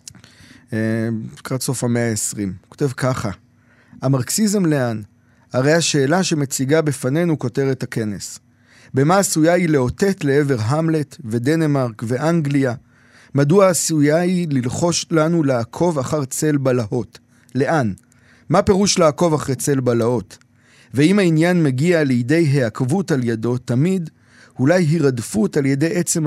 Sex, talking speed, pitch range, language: male, 115 wpm, 120-160 Hz, Hebrew